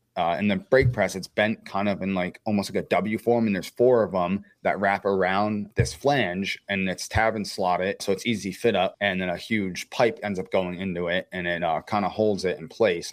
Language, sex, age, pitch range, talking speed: English, male, 30-49, 90-110 Hz, 255 wpm